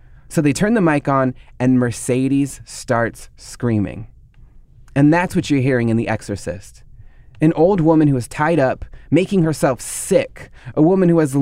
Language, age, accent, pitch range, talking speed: English, 30-49, American, 120-155 Hz, 170 wpm